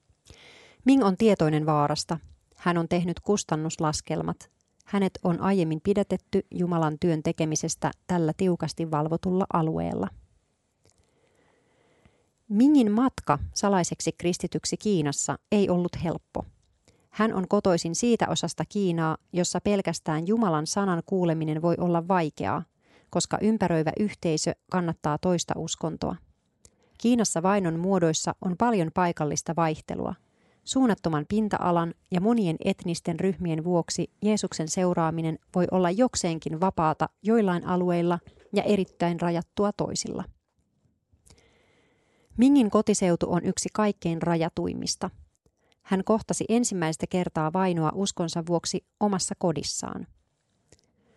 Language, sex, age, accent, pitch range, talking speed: Finnish, female, 30-49, native, 165-195 Hz, 105 wpm